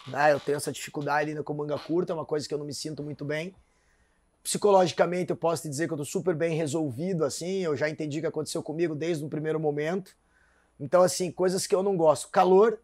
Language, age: Portuguese, 20-39